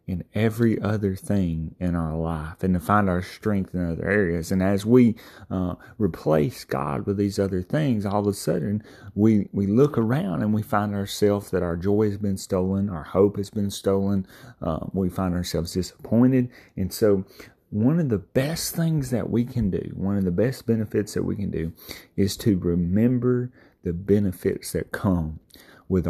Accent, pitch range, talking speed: American, 85-105 Hz, 185 wpm